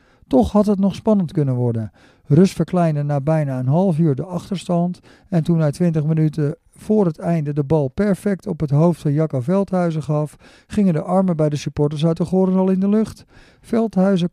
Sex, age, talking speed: male, 50-69, 200 wpm